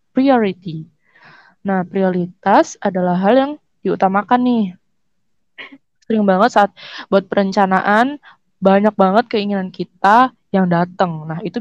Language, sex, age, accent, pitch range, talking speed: Indonesian, female, 20-39, native, 180-220 Hz, 110 wpm